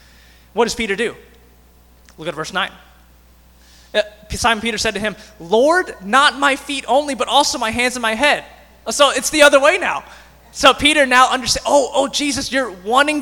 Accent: American